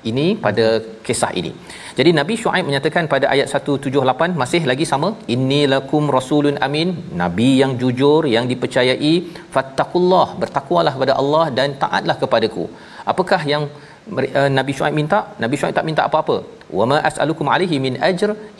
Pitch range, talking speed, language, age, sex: 125-160 Hz, 150 wpm, Malayalam, 40-59, male